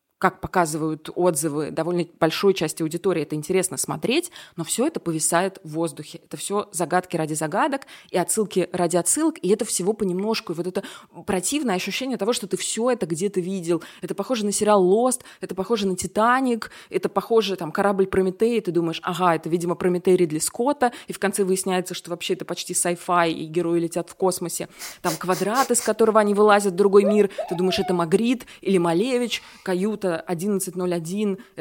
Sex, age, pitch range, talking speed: female, 20-39, 175-205 Hz, 180 wpm